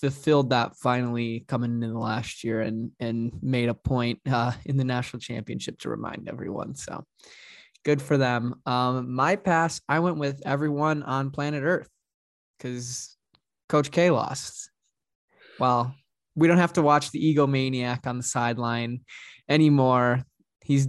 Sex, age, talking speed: male, 20-39, 150 wpm